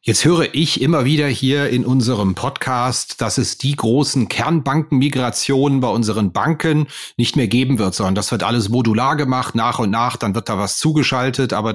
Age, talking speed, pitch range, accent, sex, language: 30-49, 185 wpm, 115-145 Hz, German, male, German